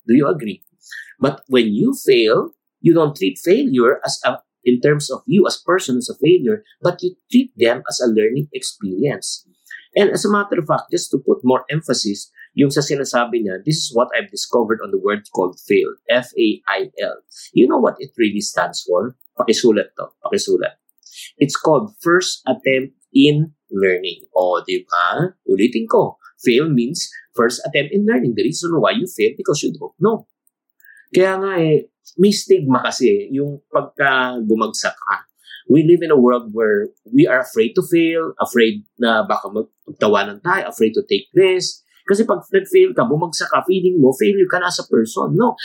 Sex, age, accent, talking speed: male, 50-69, Filipino, 180 wpm